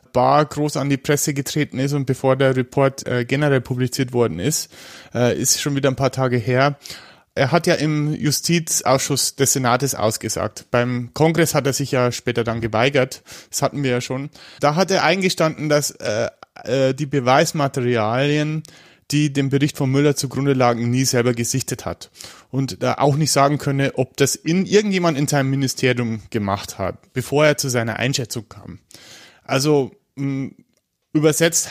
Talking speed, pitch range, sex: 165 wpm, 125-145 Hz, male